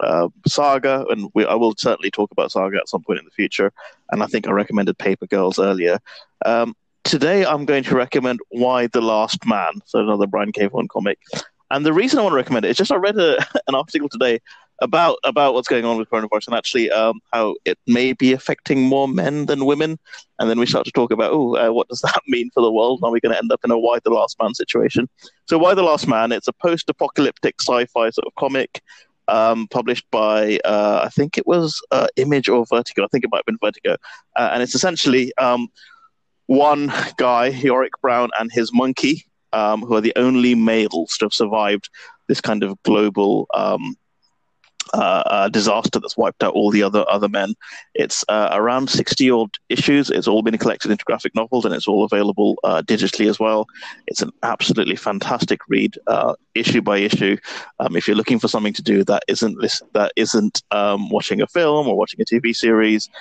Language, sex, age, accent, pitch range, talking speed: English, male, 30-49, British, 110-135 Hz, 210 wpm